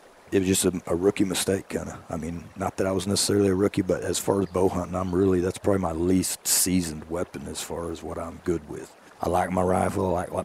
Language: English